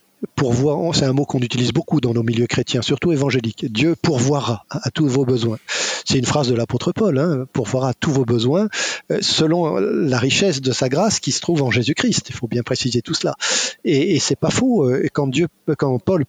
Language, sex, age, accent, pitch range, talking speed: French, male, 50-69, French, 125-170 Hz, 205 wpm